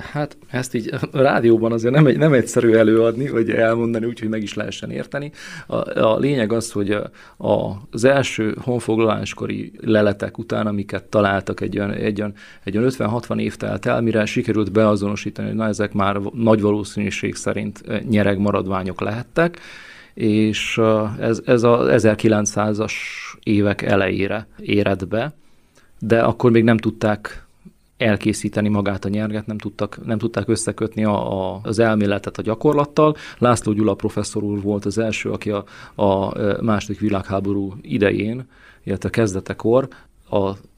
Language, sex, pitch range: Hungarian, male, 100-115 Hz